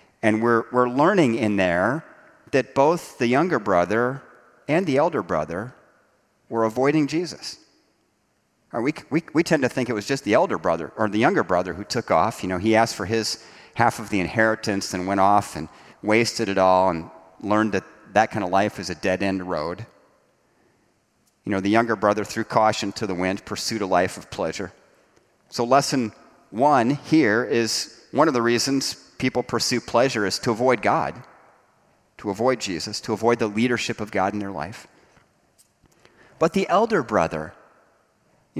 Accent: American